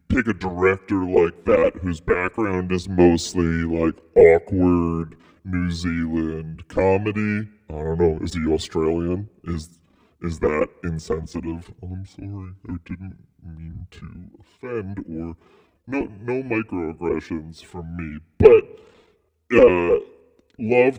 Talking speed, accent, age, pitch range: 115 wpm, American, 40-59, 85-120 Hz